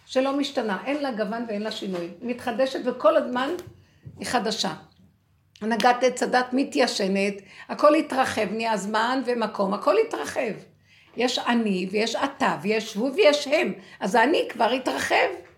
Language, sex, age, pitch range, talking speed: Hebrew, female, 60-79, 195-280 Hz, 140 wpm